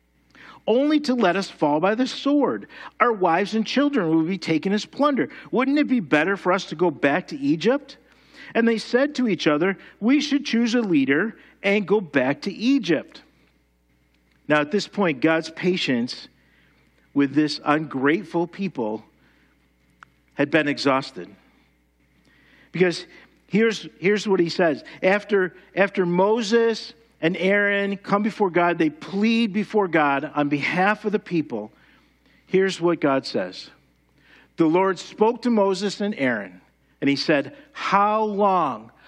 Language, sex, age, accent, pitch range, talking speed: English, male, 50-69, American, 155-230 Hz, 145 wpm